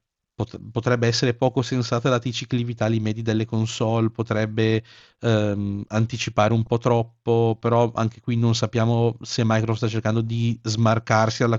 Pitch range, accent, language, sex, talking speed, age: 110-130 Hz, native, Italian, male, 140 wpm, 40-59